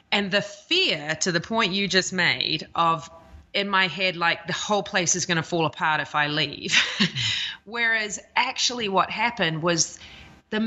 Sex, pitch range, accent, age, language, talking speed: female, 160-200 Hz, Australian, 30-49, English, 175 wpm